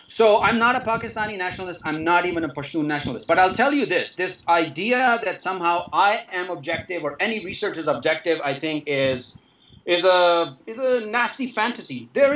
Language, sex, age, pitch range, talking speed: English, male, 40-59, 160-210 Hz, 190 wpm